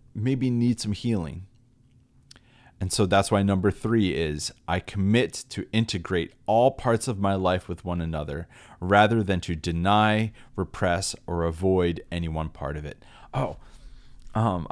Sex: male